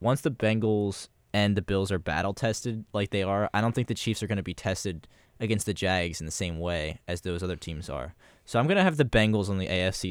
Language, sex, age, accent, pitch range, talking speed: English, male, 10-29, American, 95-120 Hz, 255 wpm